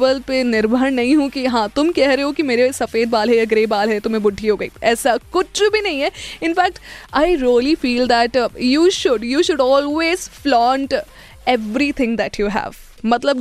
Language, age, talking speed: Hindi, 20-39, 120 wpm